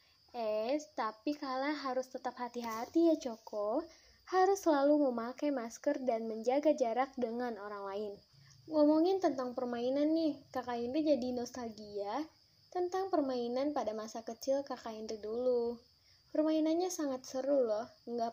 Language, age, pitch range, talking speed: Indonesian, 10-29, 235-310 Hz, 130 wpm